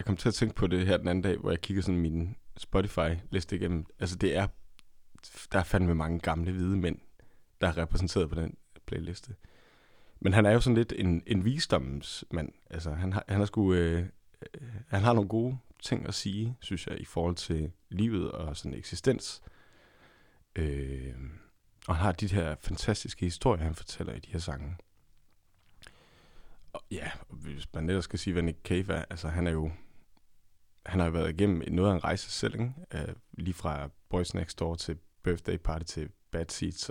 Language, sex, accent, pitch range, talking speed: Danish, male, native, 85-100 Hz, 185 wpm